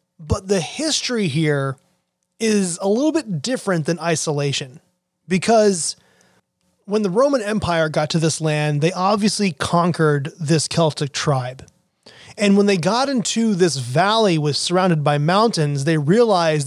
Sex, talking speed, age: male, 140 wpm, 30-49